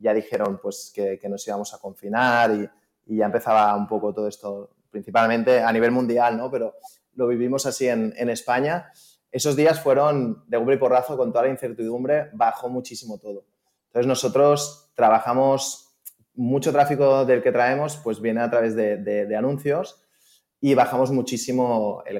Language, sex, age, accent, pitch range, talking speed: Spanish, male, 20-39, Spanish, 115-145 Hz, 170 wpm